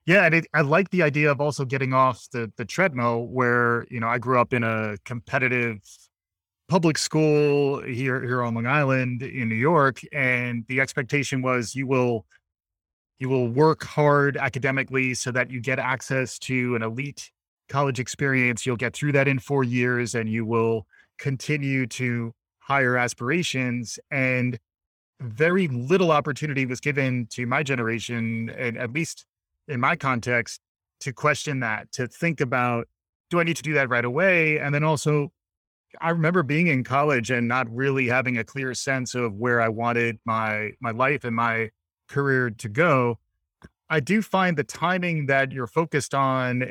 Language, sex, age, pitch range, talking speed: English, male, 20-39, 120-145 Hz, 170 wpm